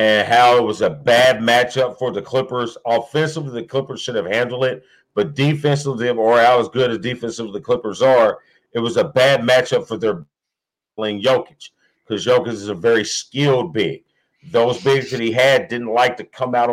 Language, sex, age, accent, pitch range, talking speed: English, male, 40-59, American, 115-130 Hz, 195 wpm